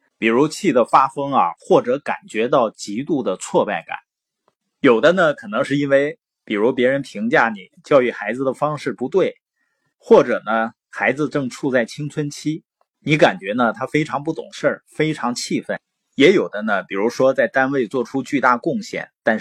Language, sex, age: Chinese, male, 30-49